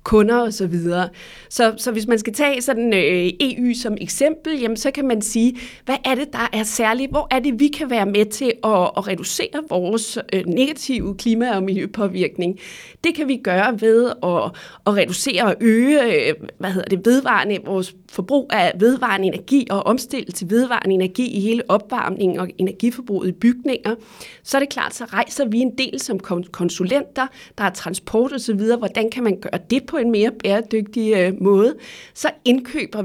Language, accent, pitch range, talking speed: Danish, native, 195-255 Hz, 185 wpm